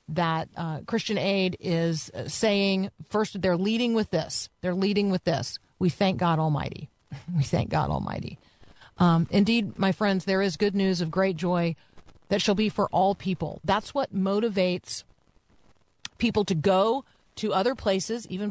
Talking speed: 160 wpm